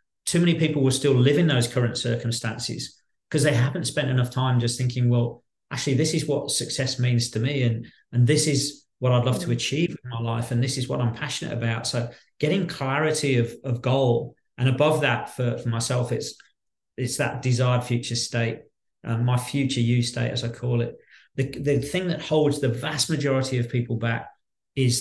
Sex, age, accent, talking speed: male, 40-59, British, 205 wpm